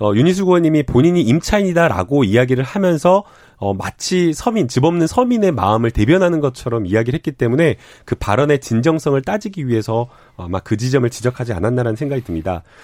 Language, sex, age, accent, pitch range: Korean, male, 30-49, native, 120-175 Hz